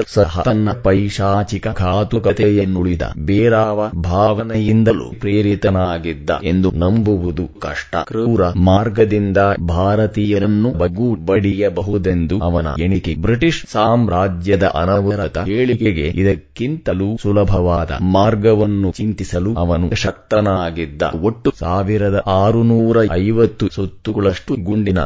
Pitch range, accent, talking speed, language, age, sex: 90-110 Hz, native, 70 wpm, Kannada, 30-49, male